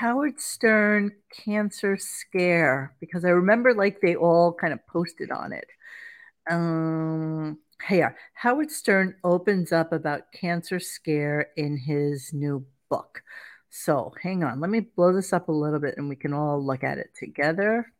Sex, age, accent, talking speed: female, 50-69, American, 160 wpm